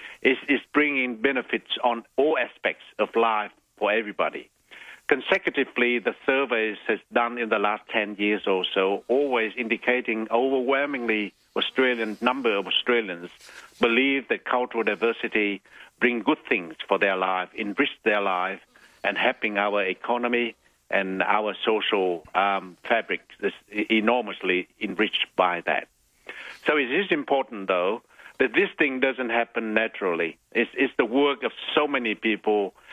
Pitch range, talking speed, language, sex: 105-125 Hz, 135 wpm, English, male